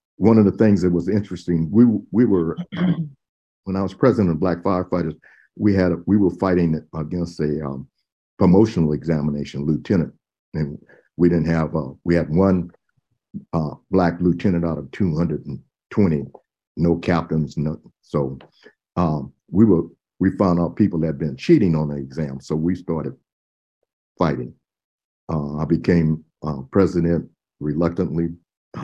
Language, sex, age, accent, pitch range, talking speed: English, male, 60-79, American, 75-95 Hz, 150 wpm